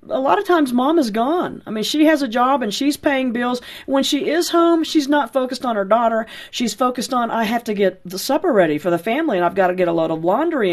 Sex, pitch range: female, 195-260 Hz